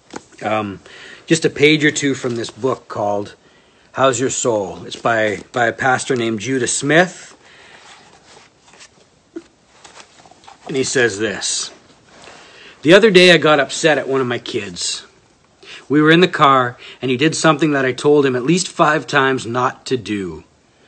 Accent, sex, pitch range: American, male, 125-155 Hz